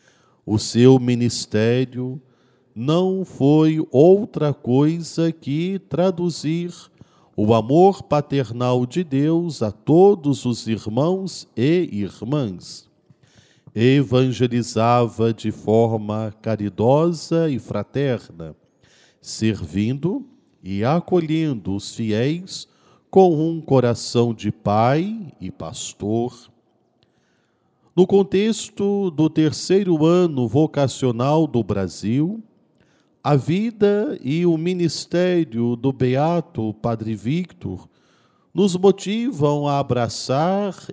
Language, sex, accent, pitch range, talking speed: Portuguese, male, Brazilian, 115-170 Hz, 85 wpm